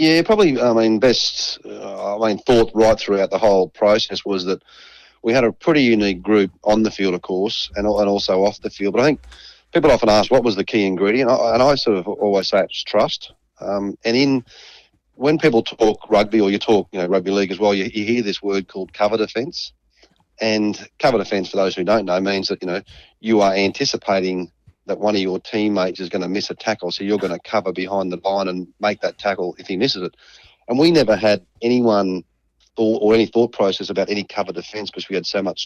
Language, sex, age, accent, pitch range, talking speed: English, male, 30-49, Australian, 95-110 Hz, 235 wpm